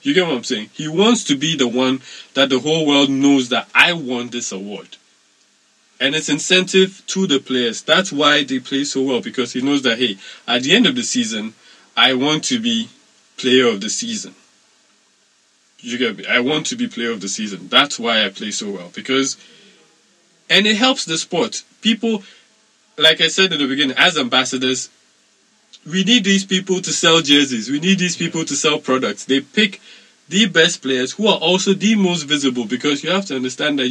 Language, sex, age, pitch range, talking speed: English, male, 20-39, 130-195 Hz, 205 wpm